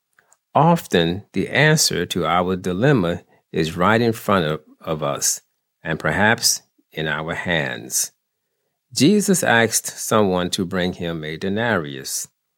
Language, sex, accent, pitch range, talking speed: English, male, American, 80-125 Hz, 125 wpm